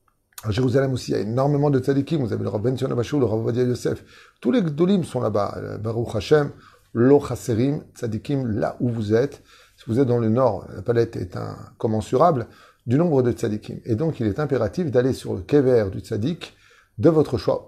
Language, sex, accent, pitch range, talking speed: French, male, French, 110-135 Hz, 205 wpm